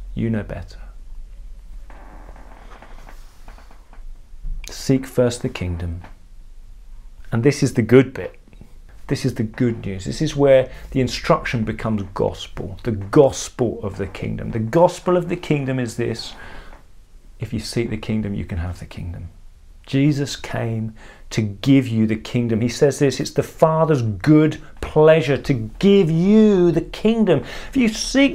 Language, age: English, 40-59